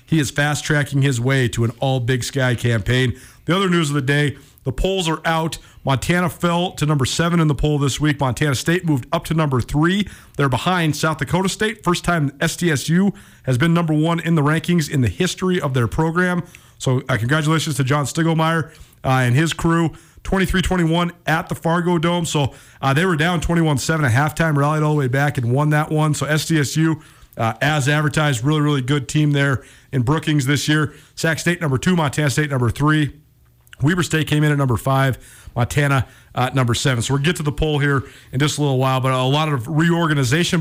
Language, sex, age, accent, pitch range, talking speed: English, male, 40-59, American, 130-160 Hz, 210 wpm